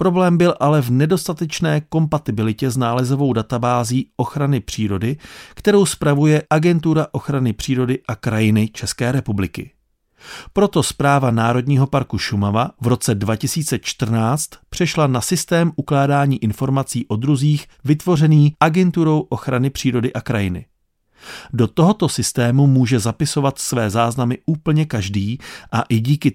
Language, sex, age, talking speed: Czech, male, 40-59, 120 wpm